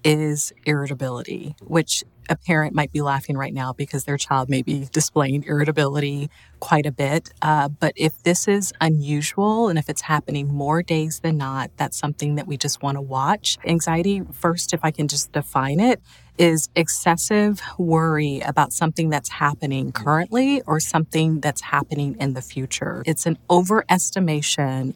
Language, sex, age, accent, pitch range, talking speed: English, female, 30-49, American, 140-175 Hz, 165 wpm